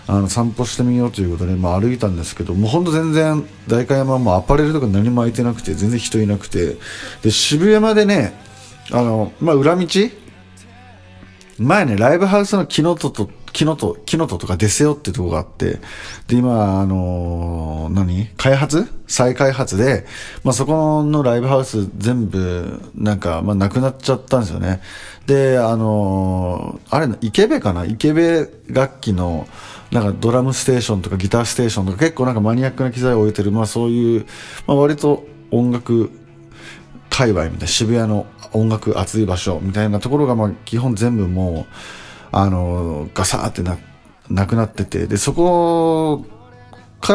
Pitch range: 95-130 Hz